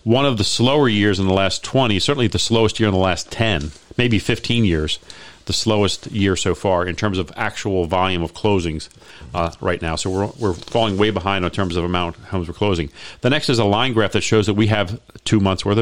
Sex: male